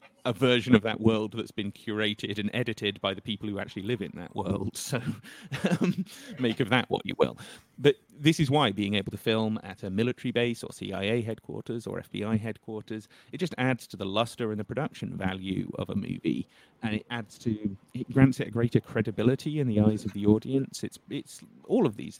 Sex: male